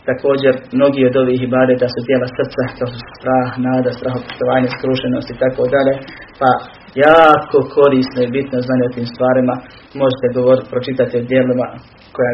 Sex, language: male, Croatian